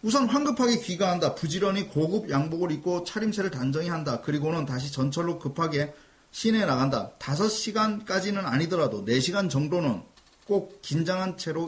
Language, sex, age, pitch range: Korean, male, 30-49, 155-205 Hz